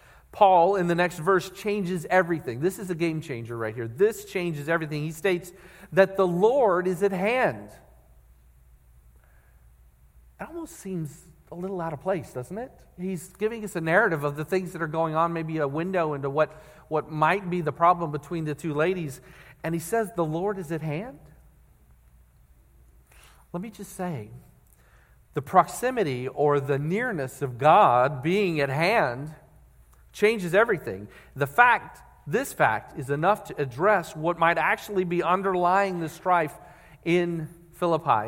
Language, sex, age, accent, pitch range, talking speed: English, male, 40-59, American, 130-180 Hz, 160 wpm